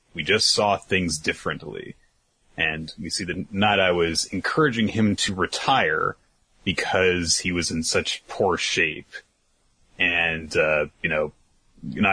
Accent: American